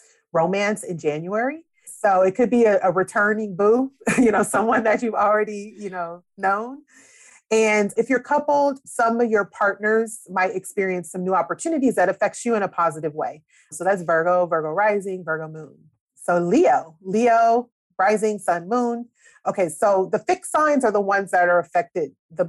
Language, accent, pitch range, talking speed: English, American, 175-230 Hz, 175 wpm